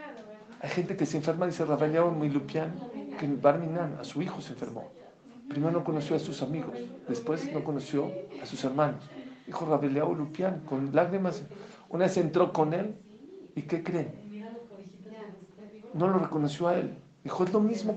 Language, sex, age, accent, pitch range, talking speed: English, male, 50-69, Mexican, 145-200 Hz, 170 wpm